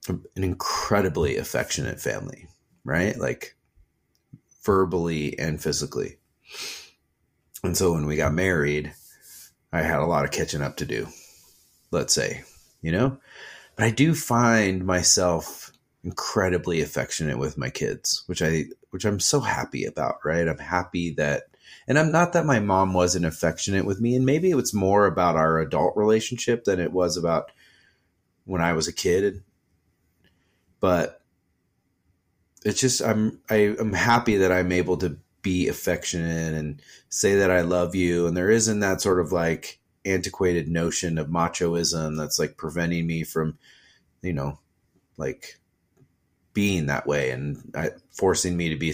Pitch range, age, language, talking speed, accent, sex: 80-95 Hz, 30-49, English, 150 wpm, American, male